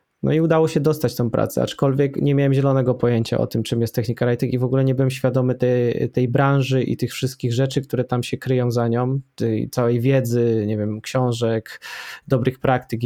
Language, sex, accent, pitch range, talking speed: Polish, male, native, 120-135 Hz, 205 wpm